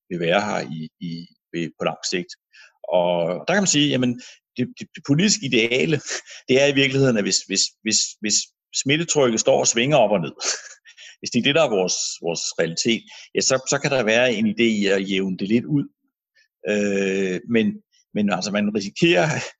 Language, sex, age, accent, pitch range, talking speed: Danish, male, 60-79, native, 100-150 Hz, 195 wpm